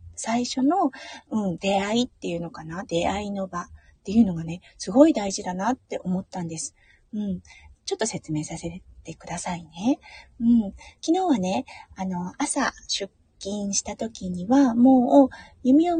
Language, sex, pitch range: Japanese, female, 175-285 Hz